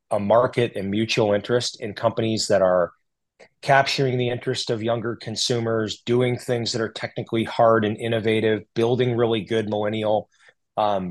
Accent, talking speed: American, 150 wpm